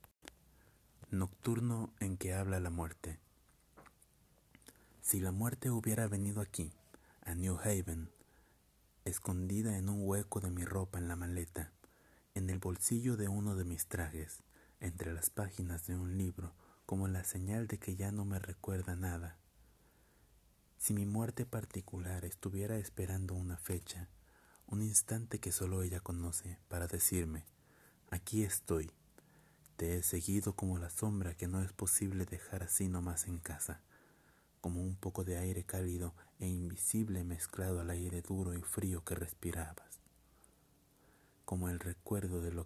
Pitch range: 85-100 Hz